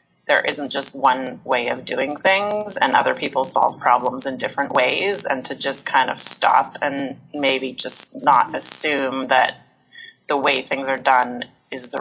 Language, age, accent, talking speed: English, 30-49, American, 175 wpm